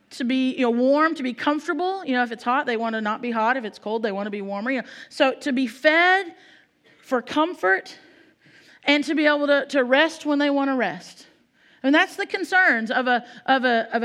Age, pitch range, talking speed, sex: 40-59, 255-320 Hz, 250 wpm, female